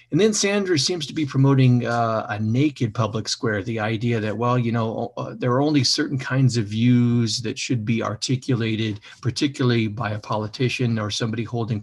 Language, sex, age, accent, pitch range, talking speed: English, male, 50-69, American, 110-130 Hz, 190 wpm